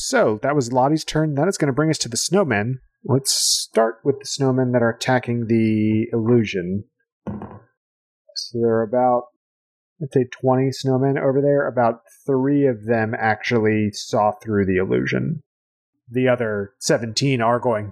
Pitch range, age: 105-130 Hz, 30-49